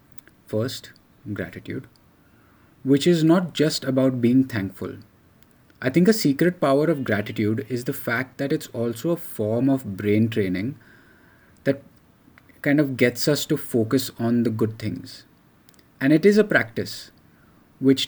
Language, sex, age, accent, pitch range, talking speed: English, male, 20-39, Indian, 110-135 Hz, 145 wpm